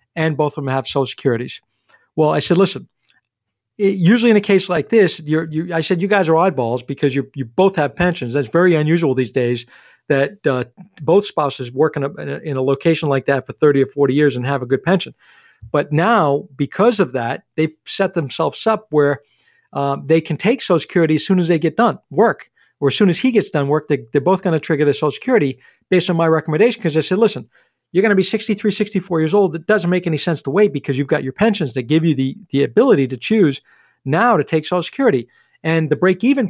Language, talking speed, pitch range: English, 240 wpm, 145-190 Hz